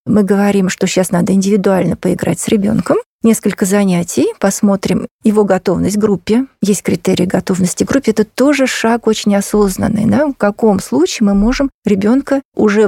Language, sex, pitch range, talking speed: Russian, female, 190-230 Hz, 165 wpm